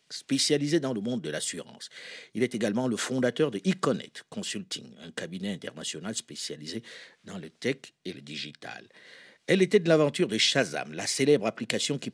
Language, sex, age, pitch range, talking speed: French, male, 50-69, 115-165 Hz, 170 wpm